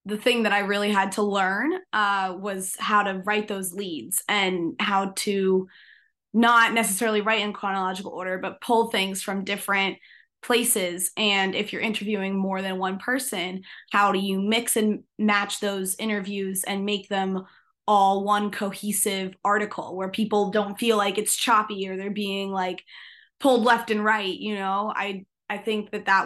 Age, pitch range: 20-39, 190-215 Hz